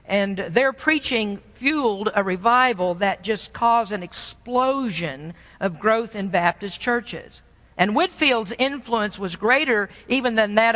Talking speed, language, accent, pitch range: 135 wpm, English, American, 205-260 Hz